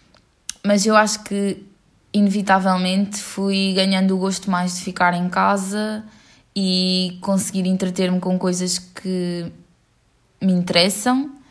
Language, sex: English, female